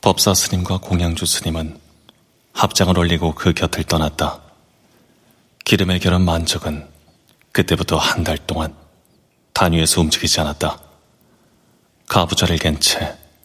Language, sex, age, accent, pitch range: Korean, male, 30-49, native, 80-90 Hz